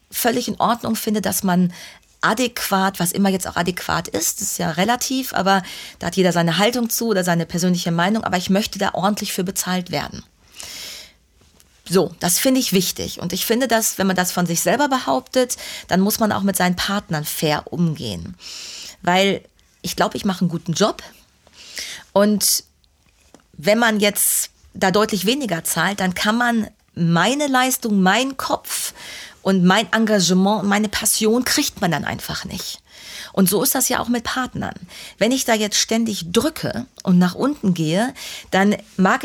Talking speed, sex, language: 175 wpm, female, German